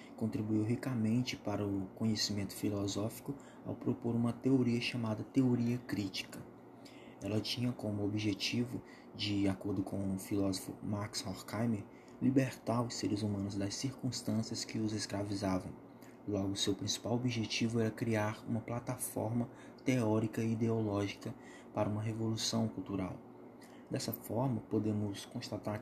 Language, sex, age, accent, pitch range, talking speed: Portuguese, male, 20-39, Brazilian, 105-120 Hz, 125 wpm